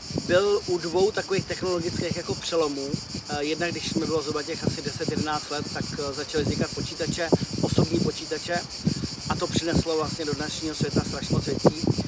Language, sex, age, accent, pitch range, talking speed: Czech, male, 30-49, native, 145-170 Hz, 155 wpm